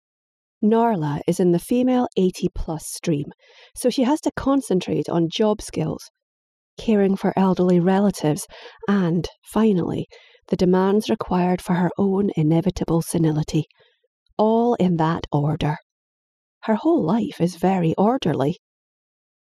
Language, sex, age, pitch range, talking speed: English, female, 30-49, 175-240 Hz, 125 wpm